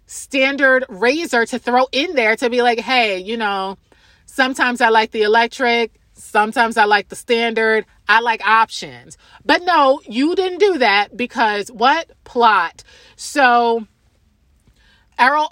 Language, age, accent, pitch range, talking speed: English, 30-49, American, 215-270 Hz, 140 wpm